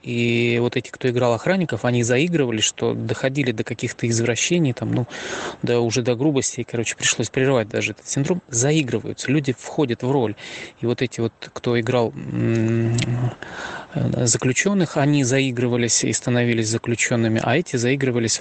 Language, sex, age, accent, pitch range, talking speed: Russian, male, 20-39, native, 120-145 Hz, 155 wpm